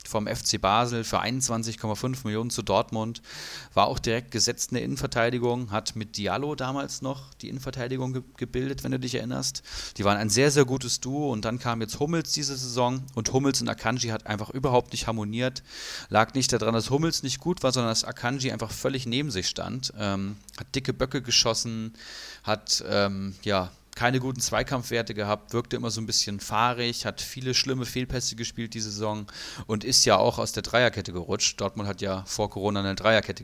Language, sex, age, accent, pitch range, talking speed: German, male, 30-49, German, 105-125 Hz, 190 wpm